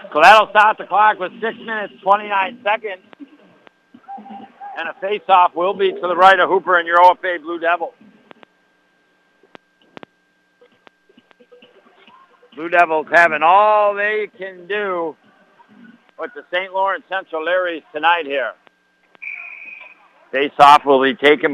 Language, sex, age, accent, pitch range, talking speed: English, male, 60-79, American, 155-210 Hz, 125 wpm